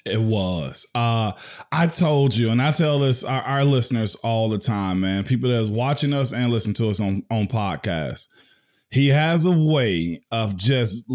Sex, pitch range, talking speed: male, 120-160 Hz, 185 wpm